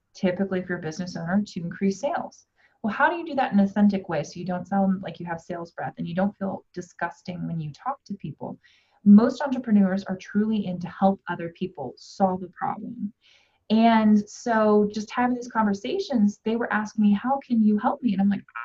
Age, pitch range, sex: 20-39, 185-220 Hz, female